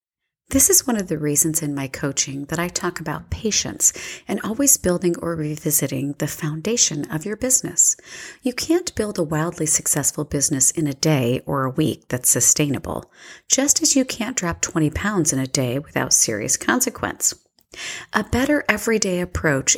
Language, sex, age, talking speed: English, female, 40-59, 170 wpm